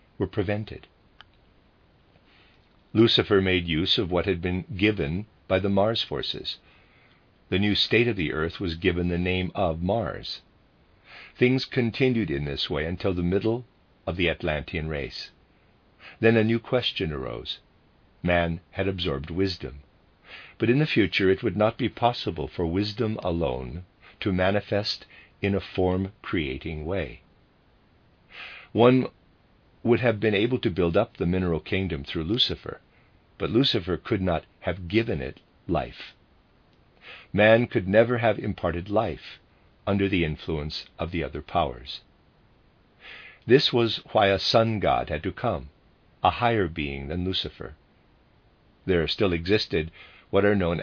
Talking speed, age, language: 140 wpm, 50-69, English